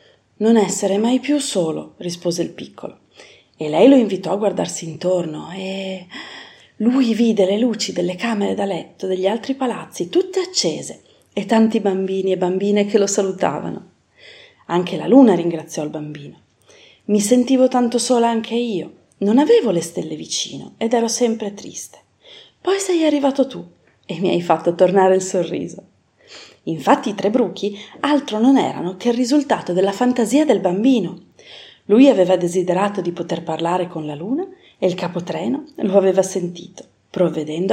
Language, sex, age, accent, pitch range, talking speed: Italian, female, 40-59, native, 180-255 Hz, 155 wpm